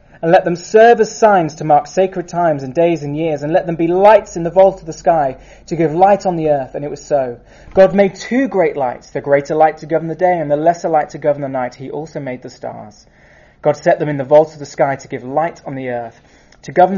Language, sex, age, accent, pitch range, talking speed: English, male, 20-39, British, 145-185 Hz, 270 wpm